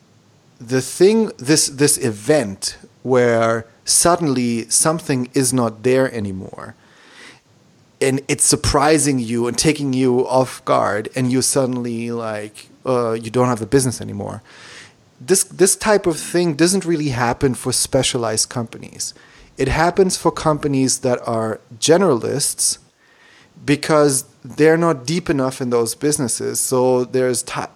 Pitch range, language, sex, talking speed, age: 115-145 Hz, English, male, 130 wpm, 30-49